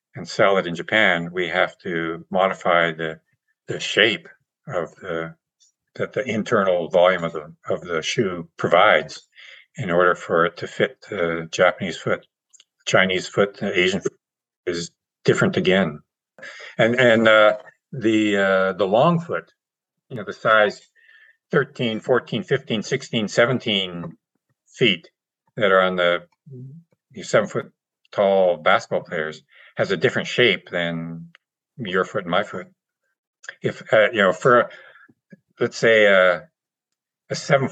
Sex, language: male, English